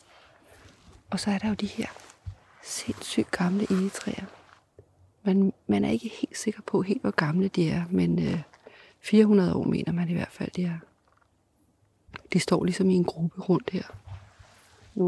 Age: 30-49